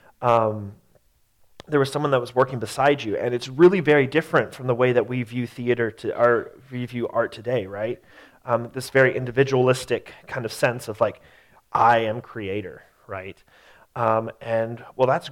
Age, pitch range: 30-49, 115-135 Hz